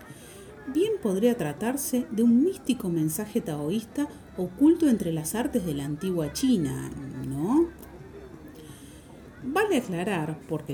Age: 40-59